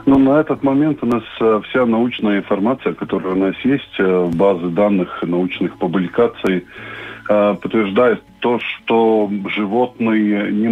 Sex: male